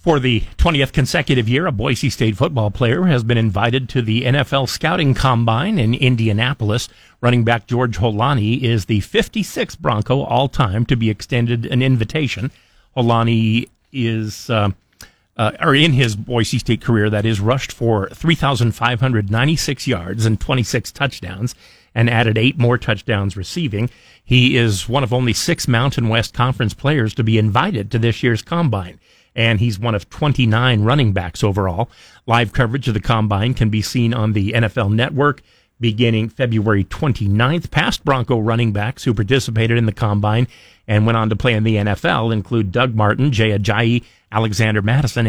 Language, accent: English, American